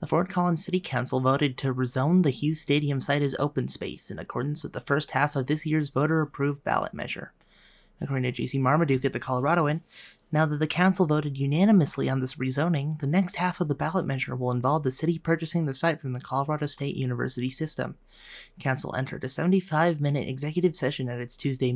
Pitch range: 135-170 Hz